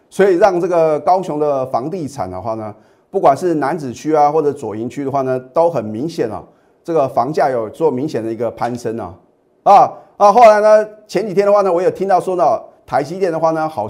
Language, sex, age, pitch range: Chinese, male, 30-49, 135-215 Hz